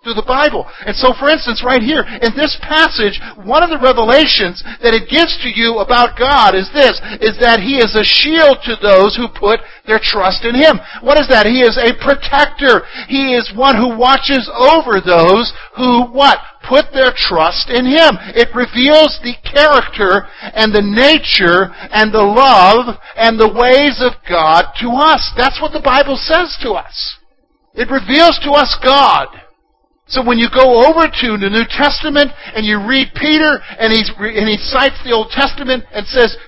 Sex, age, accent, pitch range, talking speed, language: male, 50-69, American, 220-280 Hz, 185 wpm, English